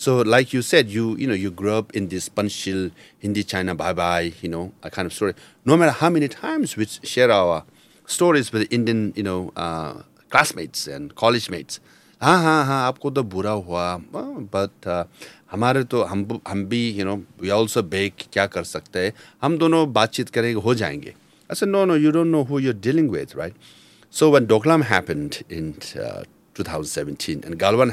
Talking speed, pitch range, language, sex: 175 wpm, 100-150 Hz, English, male